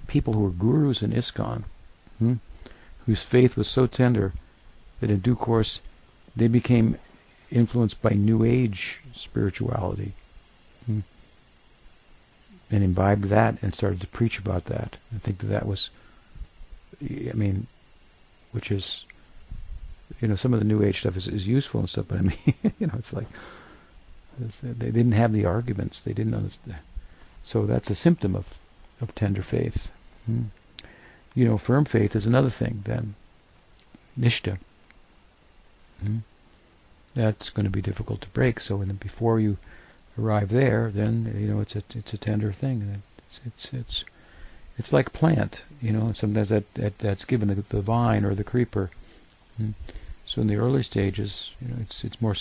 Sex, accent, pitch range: male, American, 95-115 Hz